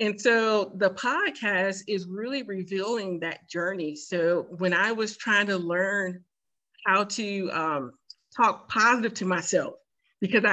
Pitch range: 180-220 Hz